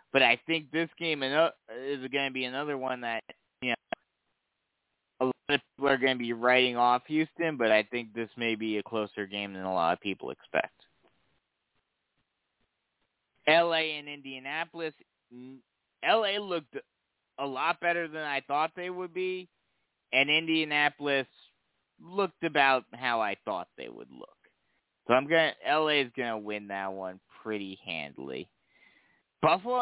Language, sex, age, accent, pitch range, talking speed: English, male, 20-39, American, 115-160 Hz, 155 wpm